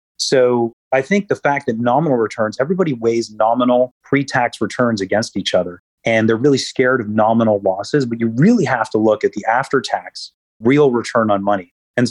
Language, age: English, 30-49